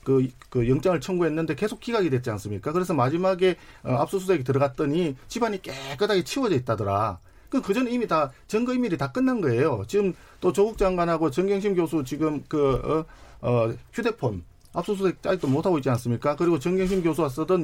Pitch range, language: 130-190 Hz, Korean